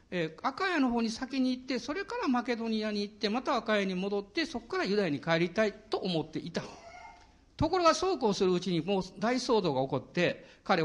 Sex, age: male, 50-69